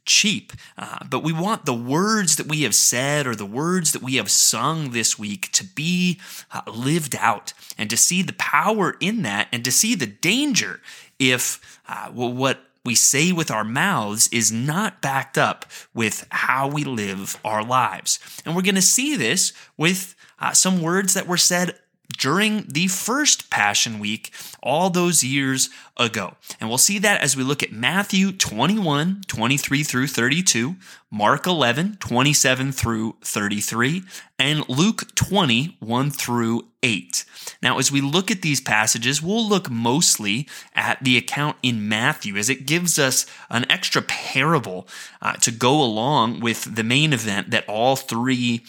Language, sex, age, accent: English, male, 30-49, American